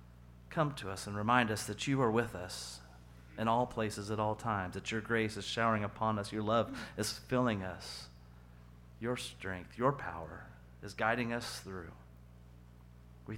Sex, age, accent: male, 40-59, American